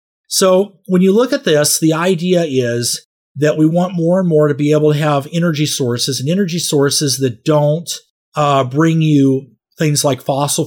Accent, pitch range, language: American, 135-160 Hz, English